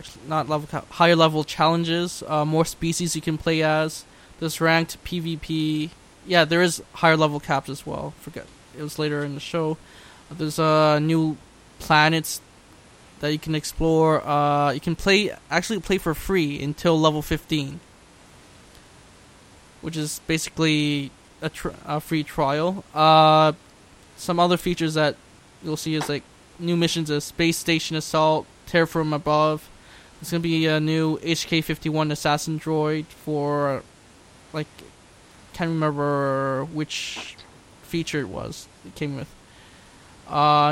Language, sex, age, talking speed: English, male, 10-29, 145 wpm